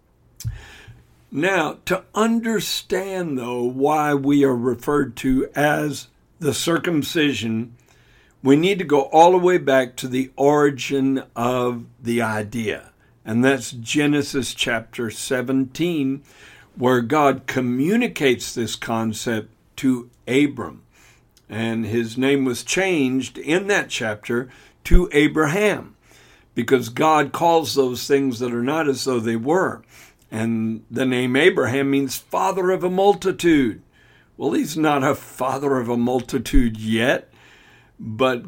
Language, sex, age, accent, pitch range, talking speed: English, male, 60-79, American, 120-145 Hz, 125 wpm